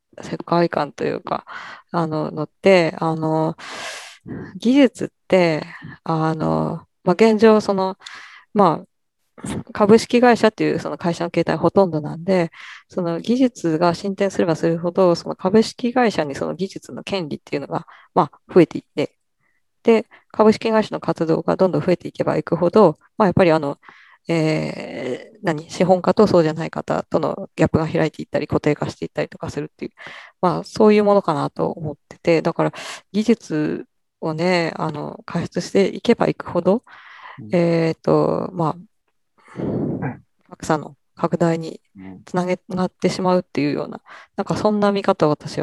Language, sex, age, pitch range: Japanese, female, 20-39, 160-200 Hz